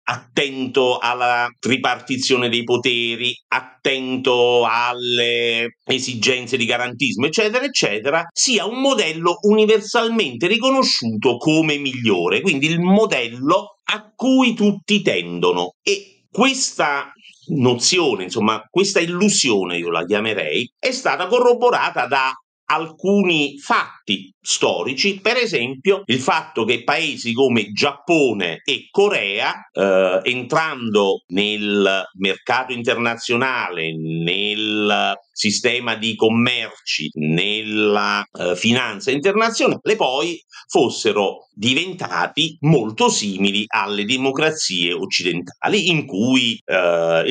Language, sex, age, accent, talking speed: Italian, male, 50-69, native, 95 wpm